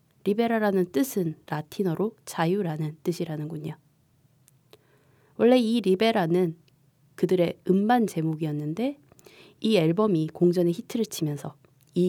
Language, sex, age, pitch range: Korean, female, 20-39, 150-205 Hz